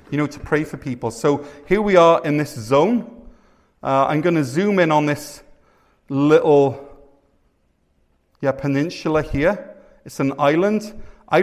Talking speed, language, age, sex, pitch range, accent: 150 wpm, English, 40-59, male, 120-150 Hz, British